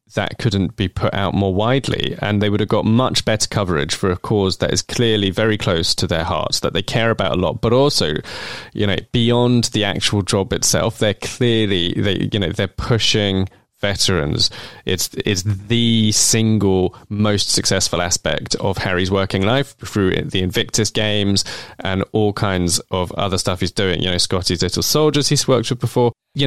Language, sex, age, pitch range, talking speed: English, male, 20-39, 95-120 Hz, 185 wpm